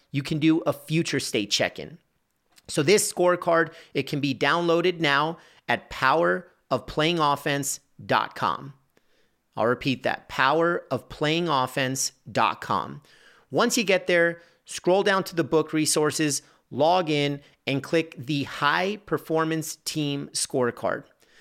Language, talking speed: English, 110 wpm